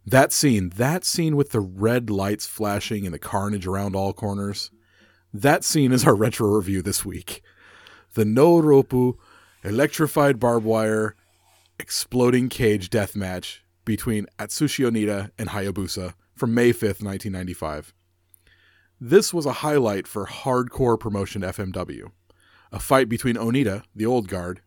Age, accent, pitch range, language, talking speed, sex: 40-59, American, 95-120 Hz, English, 140 wpm, male